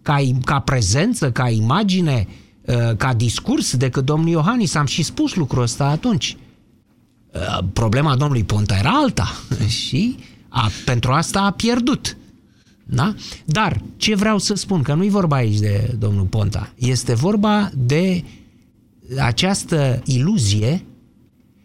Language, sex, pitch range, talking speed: Romanian, male, 125-185 Hz, 130 wpm